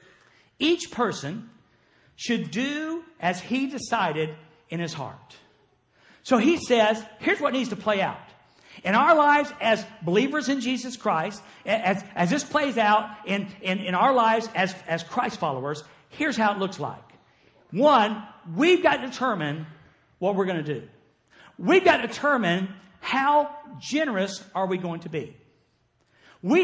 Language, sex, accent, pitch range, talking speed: English, male, American, 175-270 Hz, 155 wpm